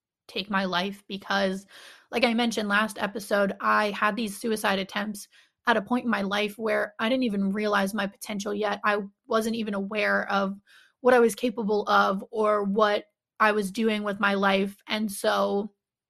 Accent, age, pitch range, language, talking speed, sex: American, 20-39, 200-220 Hz, English, 180 wpm, female